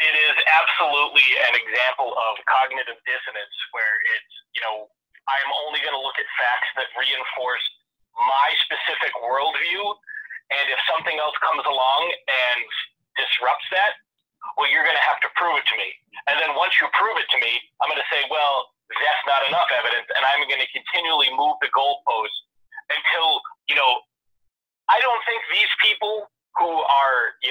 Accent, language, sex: American, English, male